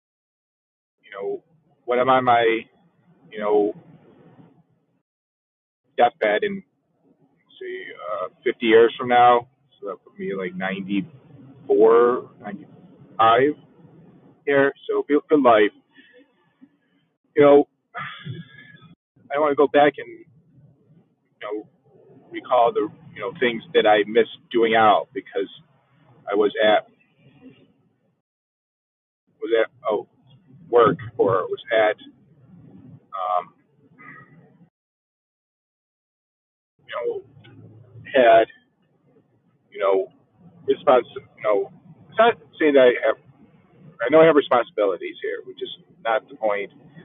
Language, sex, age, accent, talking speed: English, male, 40-59, American, 110 wpm